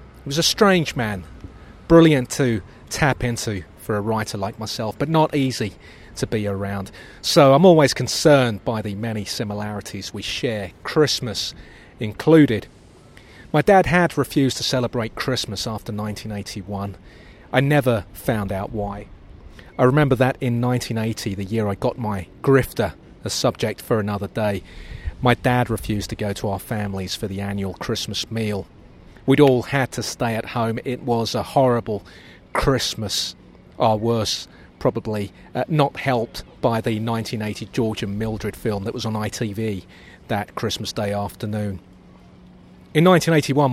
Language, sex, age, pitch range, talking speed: English, male, 30-49, 100-130 Hz, 150 wpm